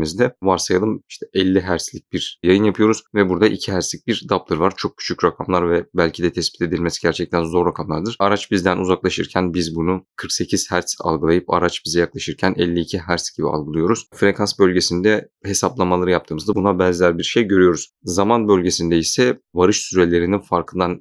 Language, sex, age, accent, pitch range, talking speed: Turkish, male, 30-49, native, 90-105 Hz, 160 wpm